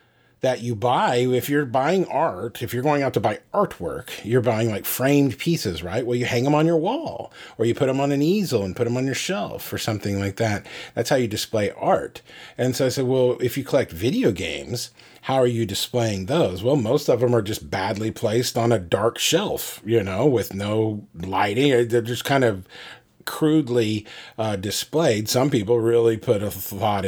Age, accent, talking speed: 40-59, American, 210 wpm